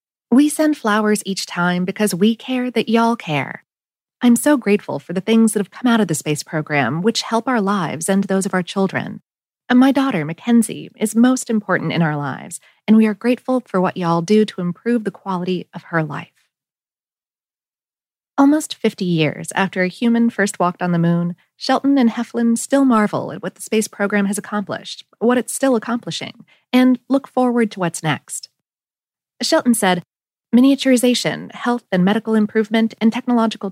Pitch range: 190-250 Hz